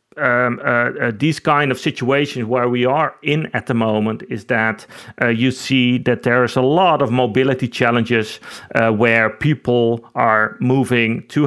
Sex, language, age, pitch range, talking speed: male, English, 40-59, 115-135 Hz, 175 wpm